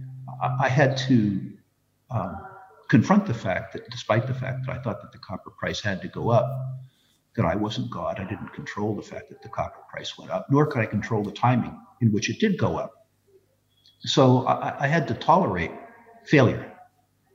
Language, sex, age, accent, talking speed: English, male, 60-79, American, 195 wpm